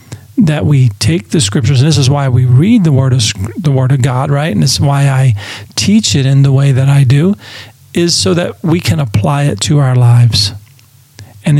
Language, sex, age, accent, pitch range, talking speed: English, male, 40-59, American, 115-150 Hz, 215 wpm